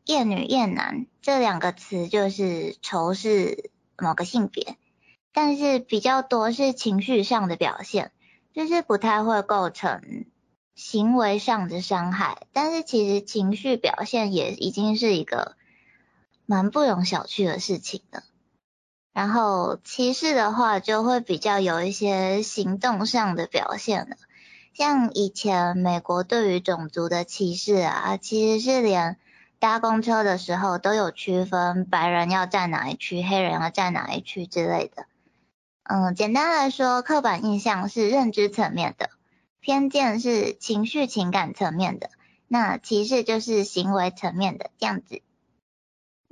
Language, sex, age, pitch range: Chinese, male, 20-39, 190-245 Hz